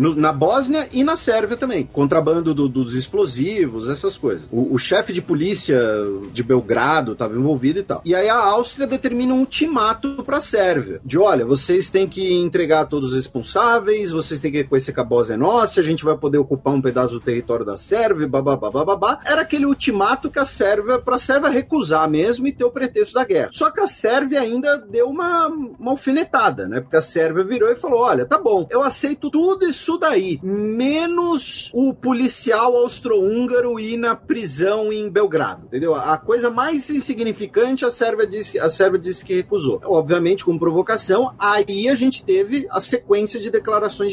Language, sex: Portuguese, male